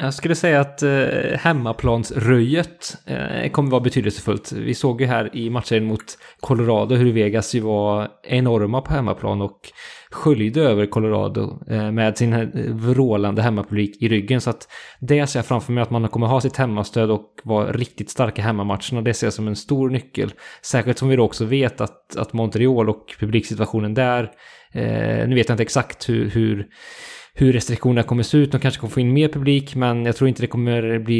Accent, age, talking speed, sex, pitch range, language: Norwegian, 20-39, 195 wpm, male, 110-130 Hz, English